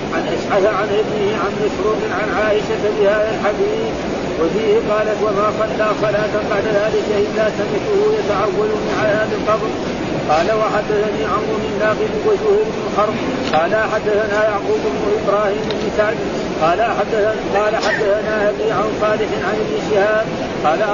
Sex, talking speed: male, 135 wpm